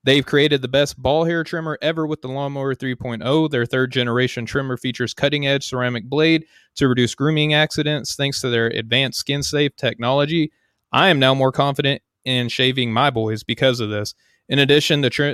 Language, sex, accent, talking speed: English, male, American, 190 wpm